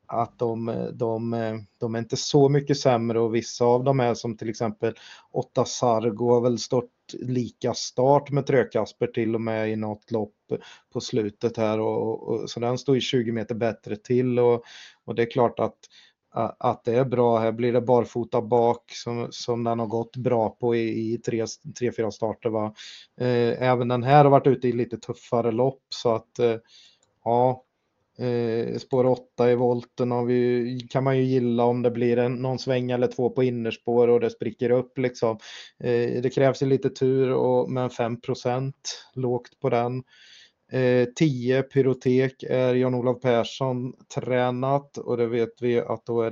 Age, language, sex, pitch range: 20-39, Swedish, male, 115-125 Hz